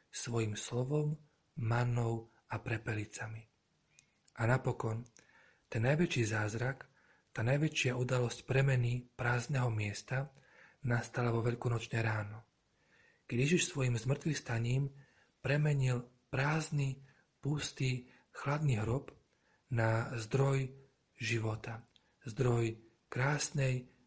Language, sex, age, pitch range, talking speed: Slovak, male, 40-59, 115-135 Hz, 80 wpm